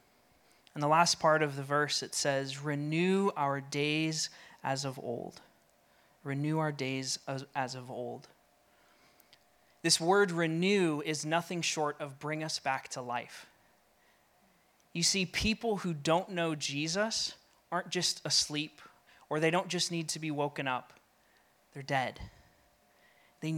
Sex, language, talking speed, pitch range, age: male, English, 140 wpm, 145-185 Hz, 20-39